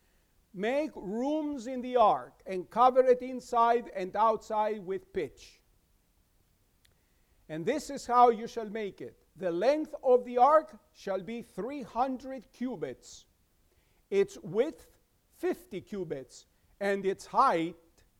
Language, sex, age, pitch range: English, male, 50-69, 170-245 Hz